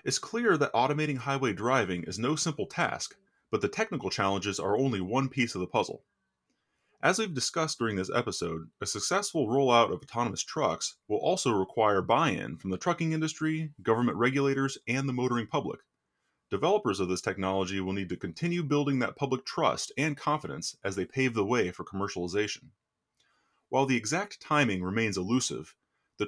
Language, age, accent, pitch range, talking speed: English, 30-49, American, 100-135 Hz, 170 wpm